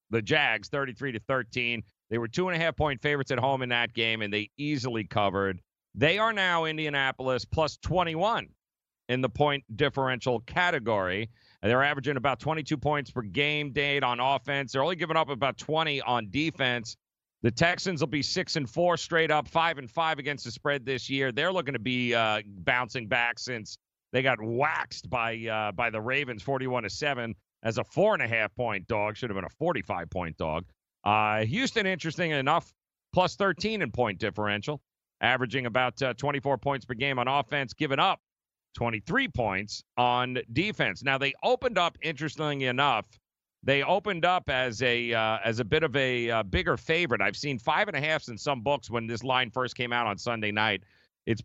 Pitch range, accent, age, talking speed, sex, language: 115-150 Hz, American, 40-59, 190 wpm, male, English